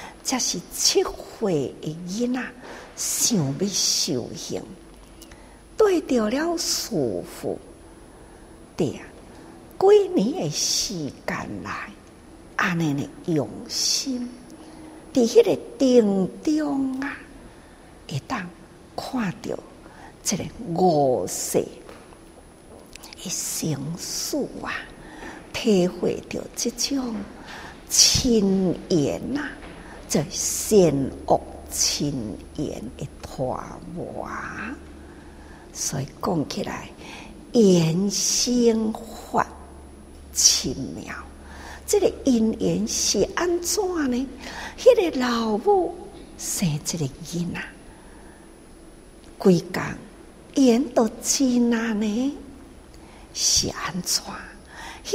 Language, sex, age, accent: Chinese, female, 50-69, American